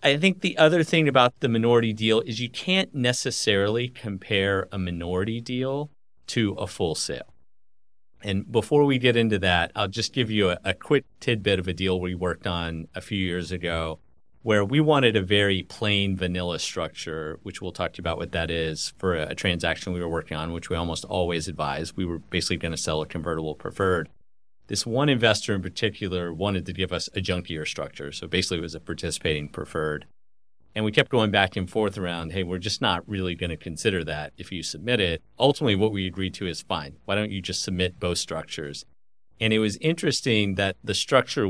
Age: 30-49